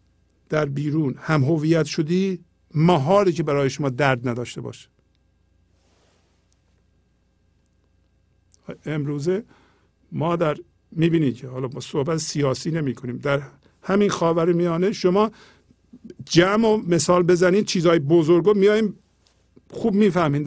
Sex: male